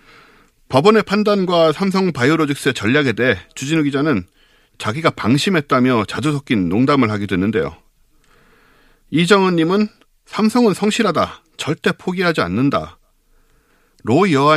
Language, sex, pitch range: Korean, male, 135-185 Hz